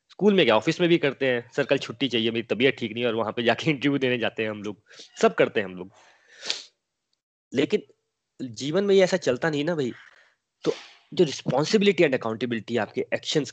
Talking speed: 195 wpm